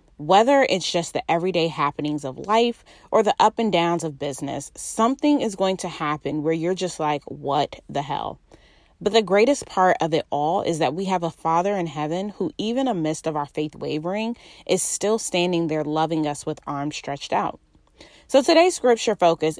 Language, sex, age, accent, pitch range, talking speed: English, female, 20-39, American, 150-205 Hz, 195 wpm